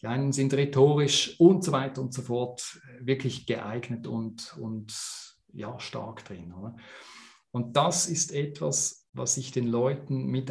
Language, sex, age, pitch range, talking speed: German, male, 40-59, 115-145 Hz, 155 wpm